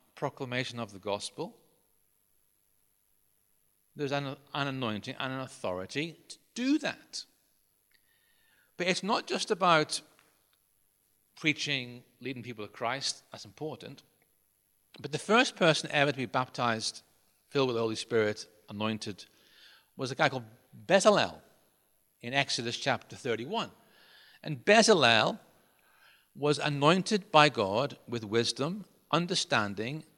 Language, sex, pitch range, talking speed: English, male, 115-180 Hz, 115 wpm